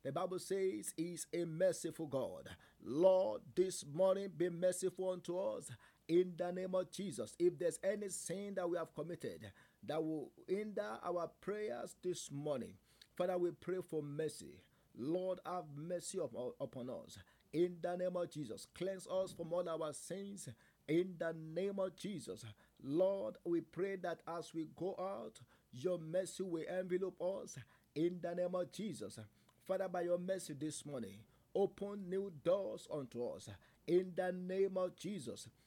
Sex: male